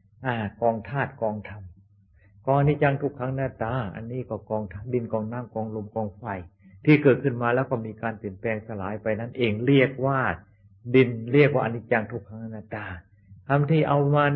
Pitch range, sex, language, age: 105-135 Hz, male, Thai, 60-79